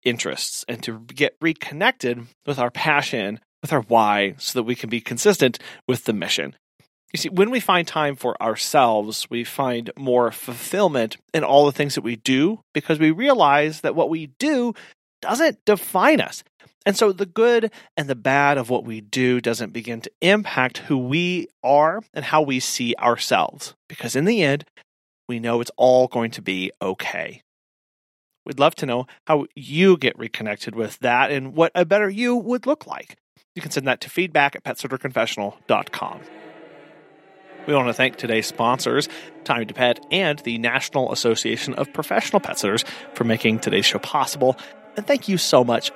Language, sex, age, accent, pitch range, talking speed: English, male, 30-49, American, 120-170 Hz, 180 wpm